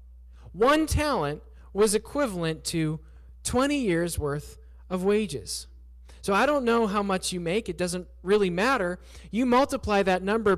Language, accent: English, American